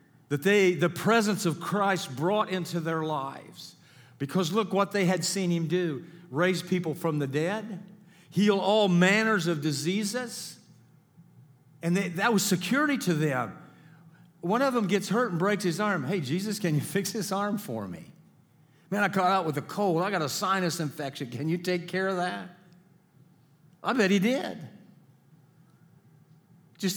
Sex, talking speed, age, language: male, 170 wpm, 50-69, English